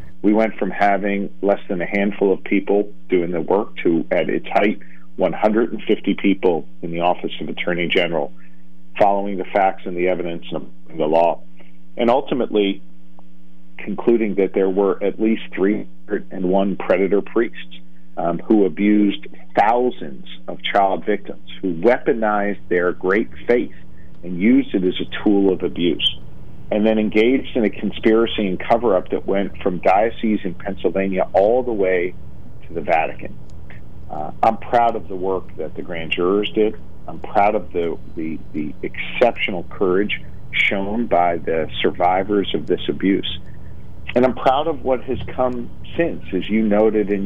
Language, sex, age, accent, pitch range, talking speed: English, male, 50-69, American, 85-105 Hz, 155 wpm